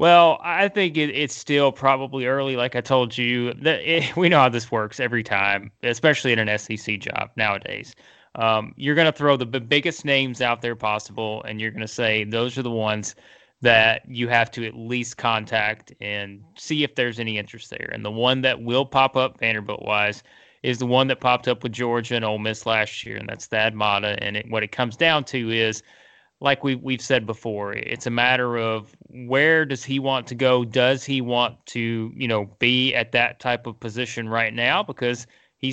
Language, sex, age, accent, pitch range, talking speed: English, male, 20-39, American, 110-135 Hz, 210 wpm